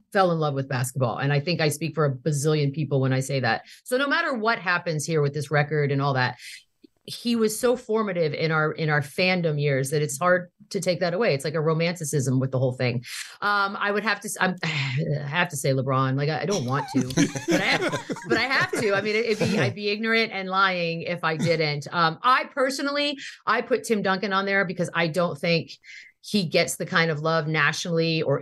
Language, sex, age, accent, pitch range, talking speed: English, female, 40-59, American, 150-205 Hz, 235 wpm